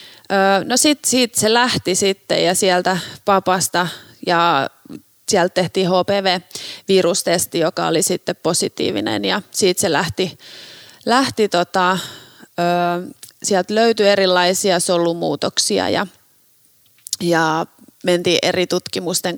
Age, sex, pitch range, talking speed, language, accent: 30-49, female, 170-190 Hz, 100 wpm, Finnish, native